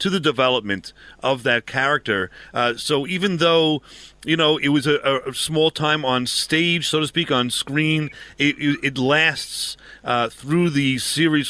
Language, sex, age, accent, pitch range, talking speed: English, male, 40-59, American, 120-150 Hz, 170 wpm